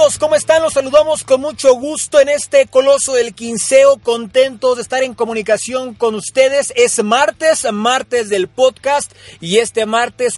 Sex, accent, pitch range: male, Mexican, 210-260 Hz